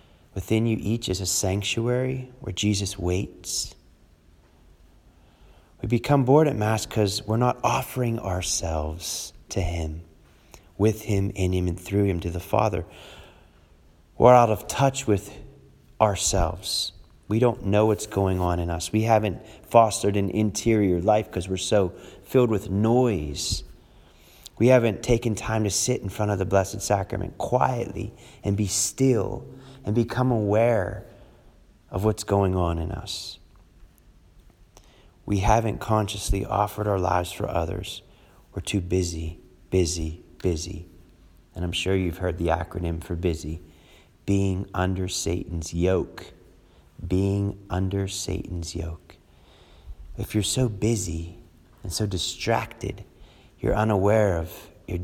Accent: American